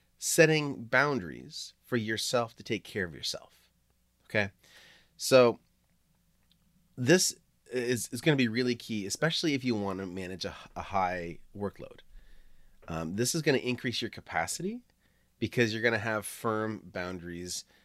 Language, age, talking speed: English, 30-49, 145 wpm